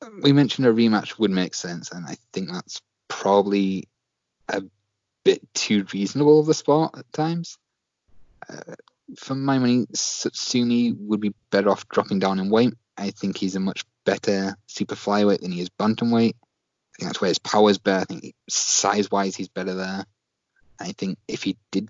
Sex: male